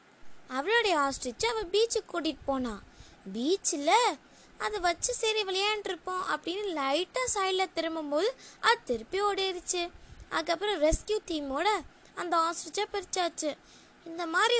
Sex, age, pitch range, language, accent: female, 20-39, 290-400 Hz, Tamil, native